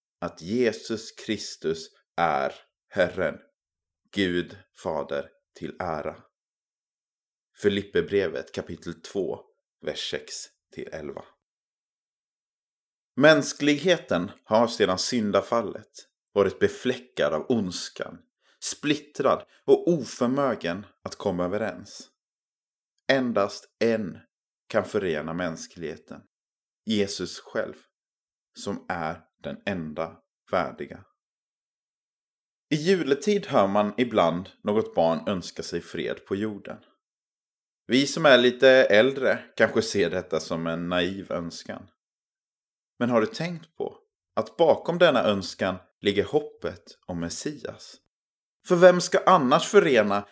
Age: 30-49